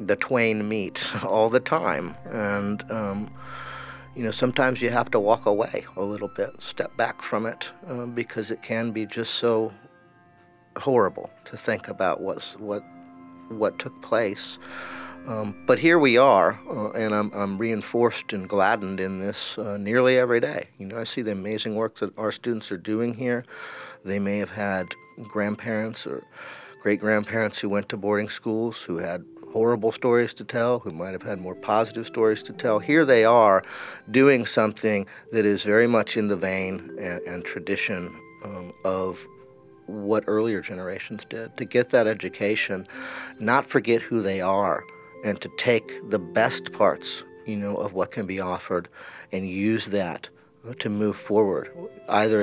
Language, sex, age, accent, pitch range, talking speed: English, male, 50-69, American, 100-115 Hz, 170 wpm